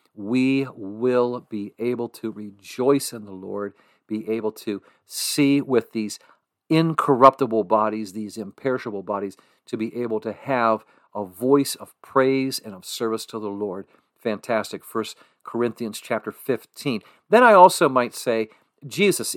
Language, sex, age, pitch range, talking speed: English, male, 50-69, 110-150 Hz, 145 wpm